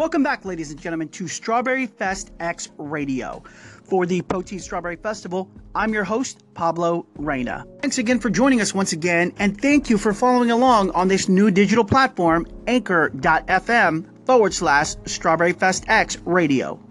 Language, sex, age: English, male, 30-49